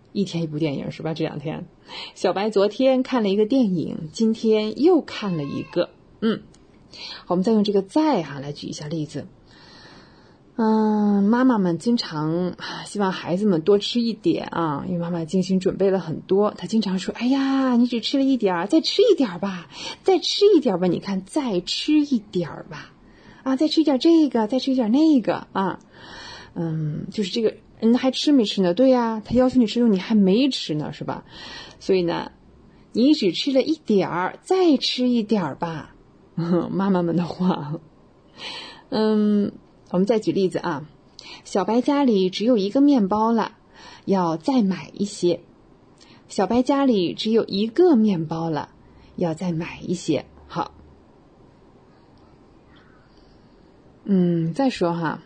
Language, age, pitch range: English, 30-49, 175-250 Hz